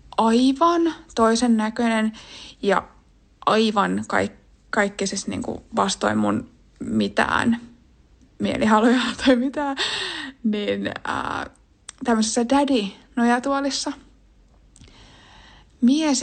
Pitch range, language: 210-260 Hz, Finnish